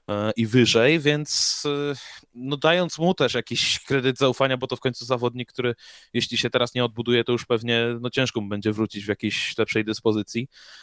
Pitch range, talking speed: 105-125 Hz, 185 wpm